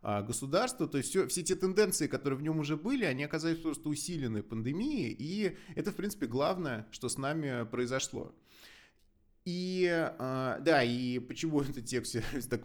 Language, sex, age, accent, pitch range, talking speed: Russian, male, 20-39, native, 115-155 Hz, 155 wpm